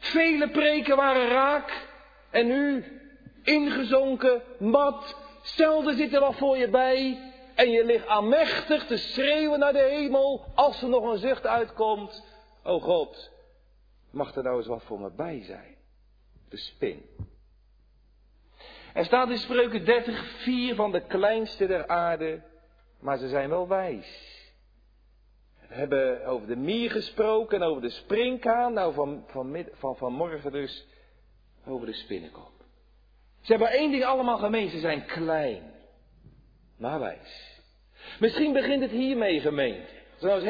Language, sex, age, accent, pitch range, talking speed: Dutch, male, 50-69, Dutch, 195-285 Hz, 145 wpm